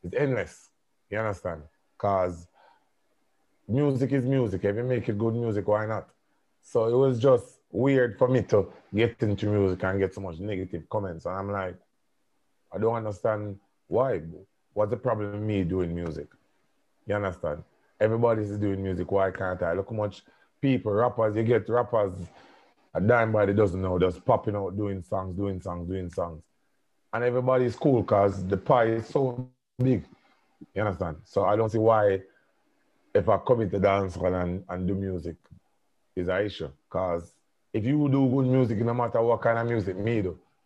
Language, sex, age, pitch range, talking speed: English, male, 30-49, 95-115 Hz, 180 wpm